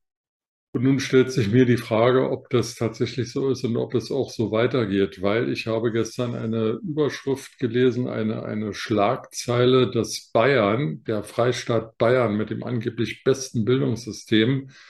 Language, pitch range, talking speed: German, 110-125 Hz, 155 wpm